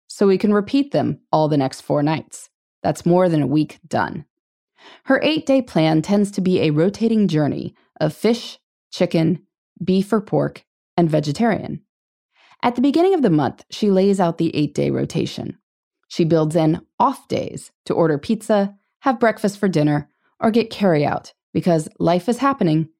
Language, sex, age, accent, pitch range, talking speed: English, female, 20-39, American, 155-230 Hz, 170 wpm